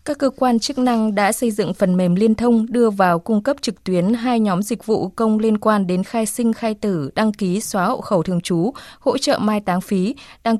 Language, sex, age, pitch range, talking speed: Vietnamese, female, 20-39, 185-235 Hz, 245 wpm